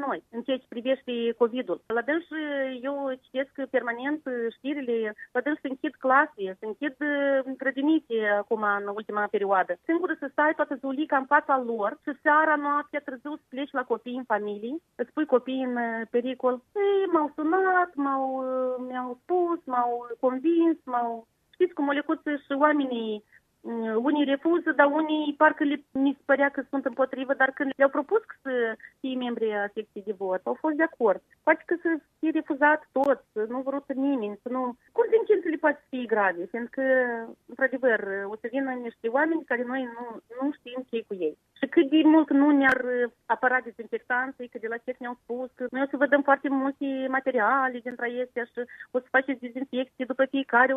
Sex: female